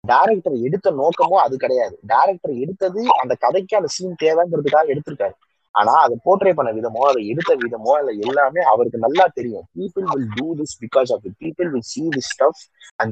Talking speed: 100 wpm